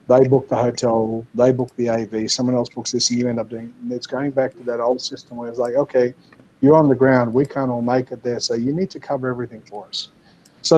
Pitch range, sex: 120-140 Hz, male